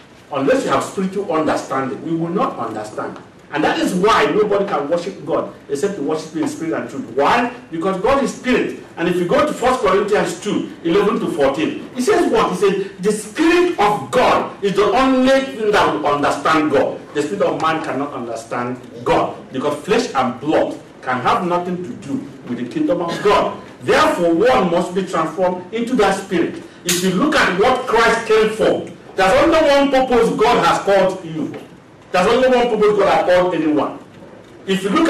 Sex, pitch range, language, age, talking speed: male, 180-240 Hz, English, 50-69, 195 wpm